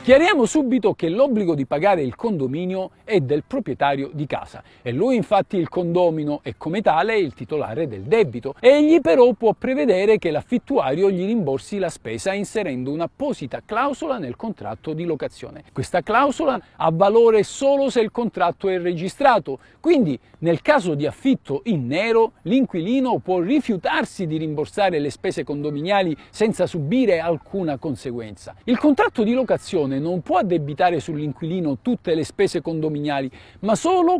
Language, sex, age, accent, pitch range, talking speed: Italian, male, 50-69, native, 160-255 Hz, 150 wpm